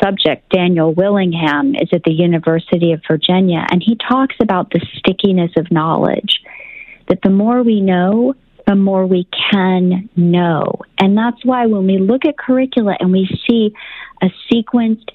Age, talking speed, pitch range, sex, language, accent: 40-59, 160 wpm, 175-230 Hz, female, English, American